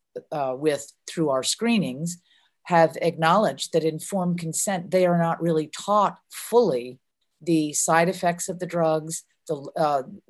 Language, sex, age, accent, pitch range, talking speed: English, female, 50-69, American, 155-190 Hz, 135 wpm